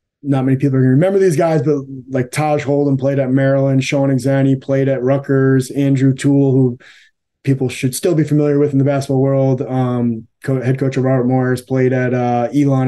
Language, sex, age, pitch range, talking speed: English, male, 20-39, 130-150 Hz, 200 wpm